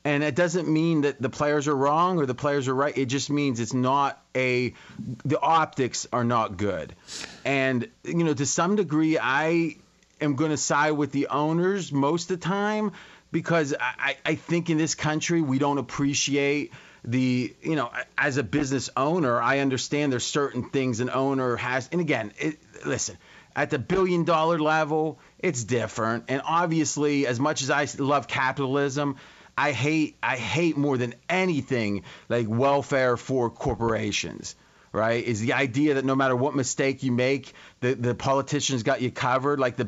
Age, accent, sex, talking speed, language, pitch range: 30-49, American, male, 175 wpm, English, 130-155 Hz